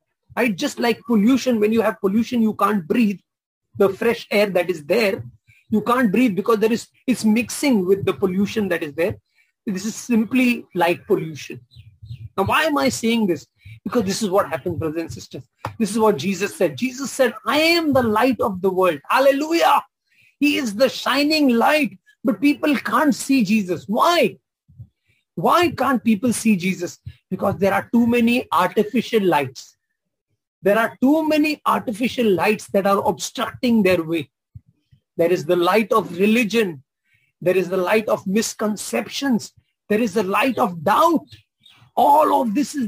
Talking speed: 170 wpm